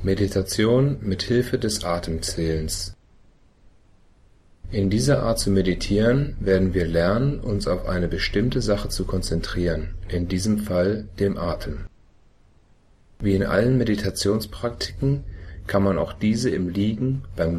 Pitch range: 90-105 Hz